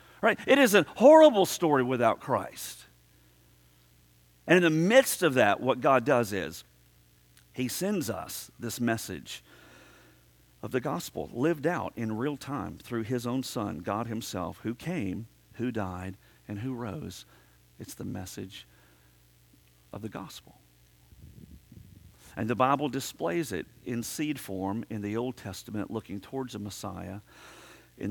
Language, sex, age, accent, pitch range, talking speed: English, male, 50-69, American, 95-125 Hz, 140 wpm